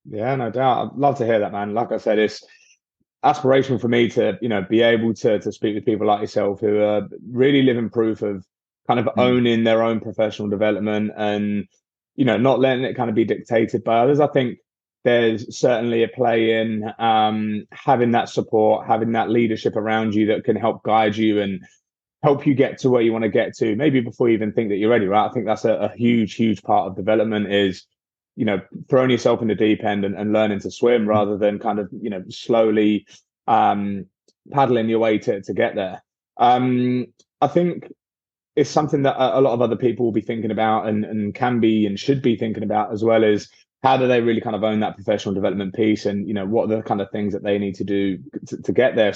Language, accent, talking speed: English, British, 230 wpm